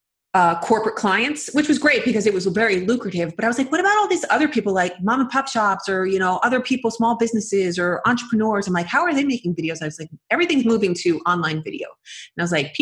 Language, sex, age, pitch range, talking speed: English, female, 30-49, 165-220 Hz, 255 wpm